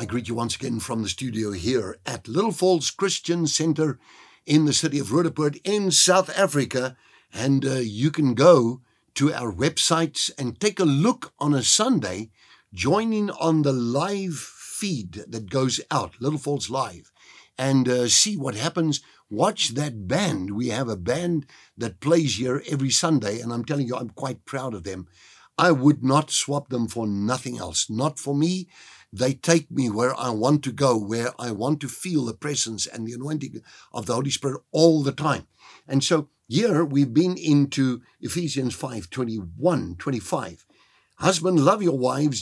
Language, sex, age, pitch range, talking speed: English, male, 60-79, 120-165 Hz, 175 wpm